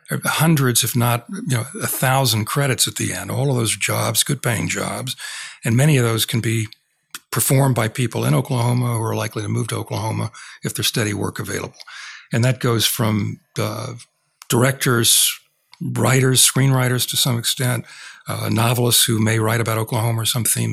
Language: English